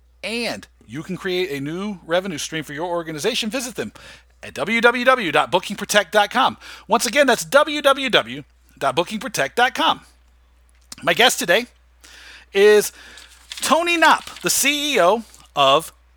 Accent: American